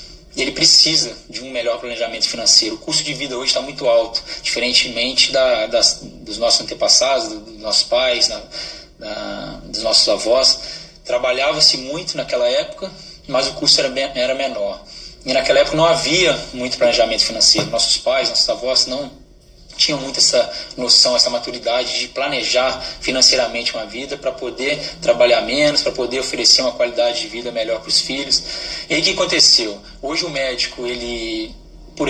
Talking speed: 165 wpm